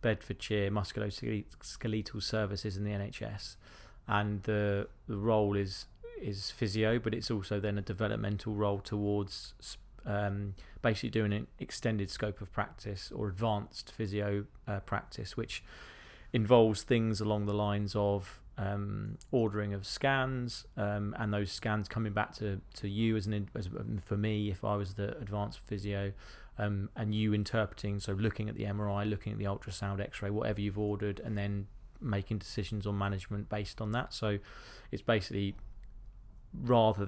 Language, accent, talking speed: English, British, 155 wpm